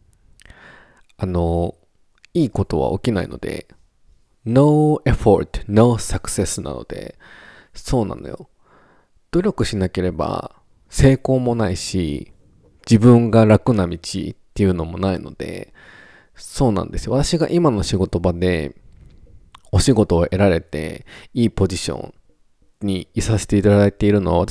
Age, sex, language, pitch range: 20-39, male, Japanese, 90-115 Hz